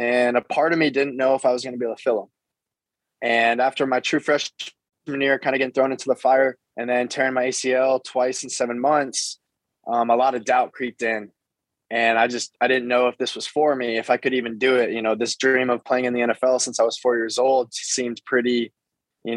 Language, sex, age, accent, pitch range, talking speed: English, male, 20-39, American, 120-135 Hz, 250 wpm